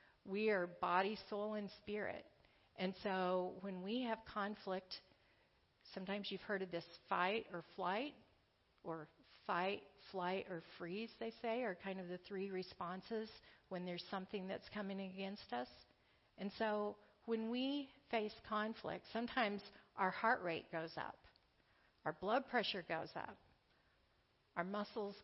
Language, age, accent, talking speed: English, 50-69, American, 140 wpm